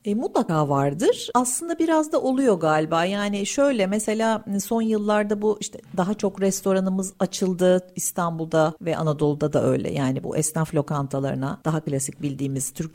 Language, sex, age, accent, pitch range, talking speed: Turkish, female, 50-69, native, 150-205 Hz, 150 wpm